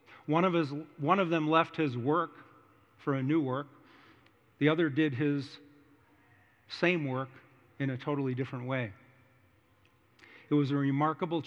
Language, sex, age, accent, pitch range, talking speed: English, male, 50-69, American, 120-155 Hz, 145 wpm